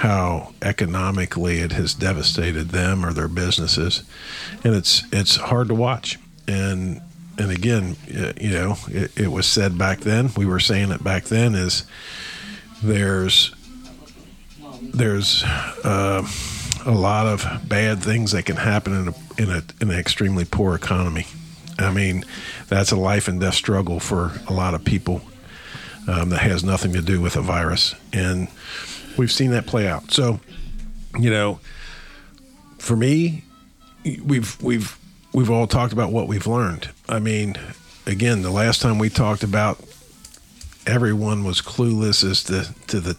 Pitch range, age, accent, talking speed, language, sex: 95-115 Hz, 50-69, American, 155 wpm, English, male